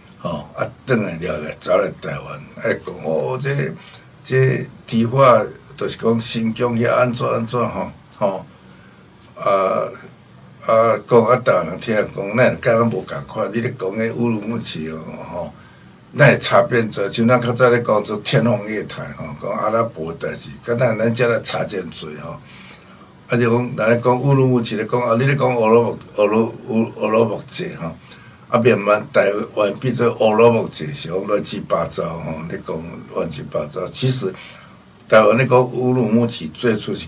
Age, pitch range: 60-79, 110-125 Hz